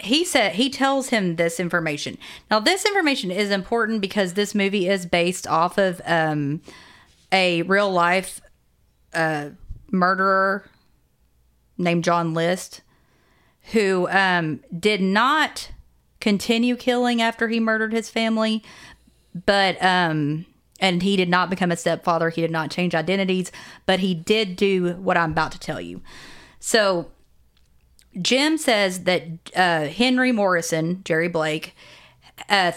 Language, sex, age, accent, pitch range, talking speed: English, female, 30-49, American, 165-215 Hz, 135 wpm